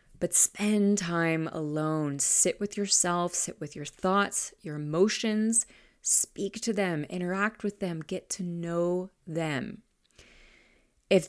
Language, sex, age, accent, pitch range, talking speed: English, female, 30-49, American, 175-235 Hz, 130 wpm